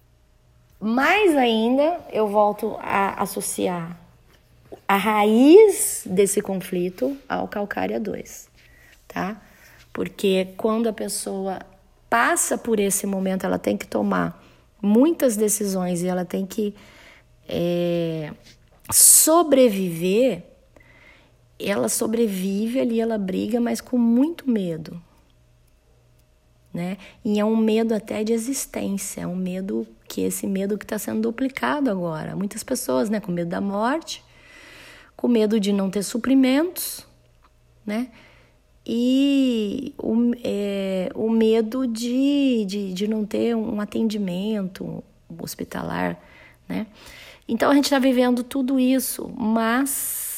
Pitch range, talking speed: 185-240 Hz, 115 wpm